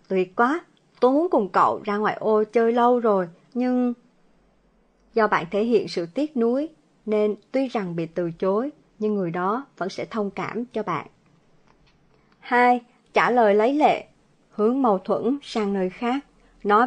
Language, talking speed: Vietnamese, 165 wpm